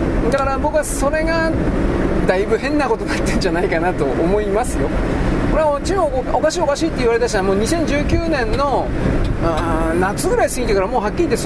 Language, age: Japanese, 40-59